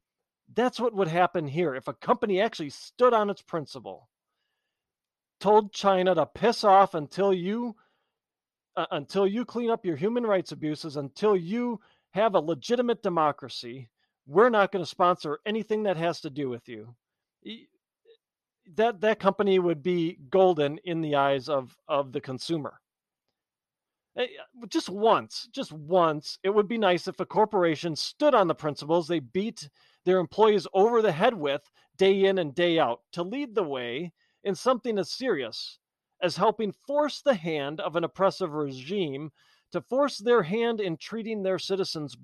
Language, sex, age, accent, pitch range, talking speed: English, male, 40-59, American, 160-220 Hz, 160 wpm